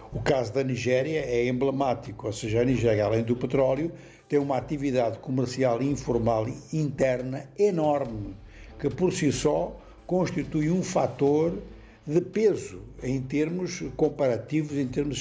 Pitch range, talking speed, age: 125-160 Hz, 140 wpm, 60-79